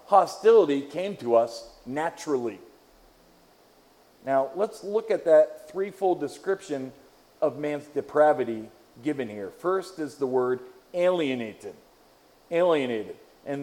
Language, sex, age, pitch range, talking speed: English, male, 40-59, 140-195 Hz, 105 wpm